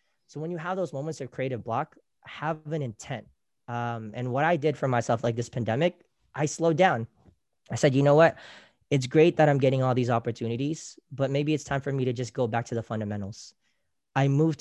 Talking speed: 220 wpm